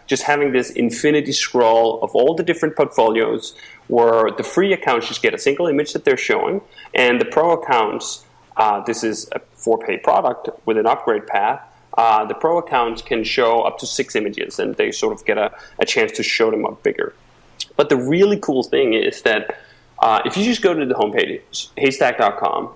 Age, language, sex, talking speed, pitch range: 30-49, English, male, 200 wpm, 115-175 Hz